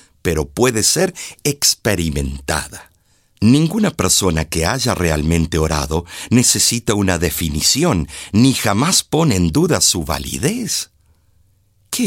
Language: Spanish